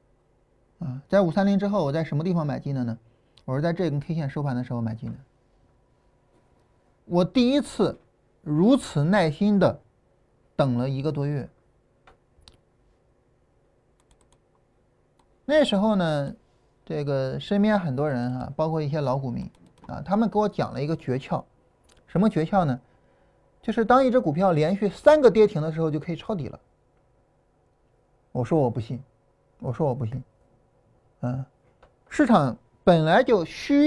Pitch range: 130-205 Hz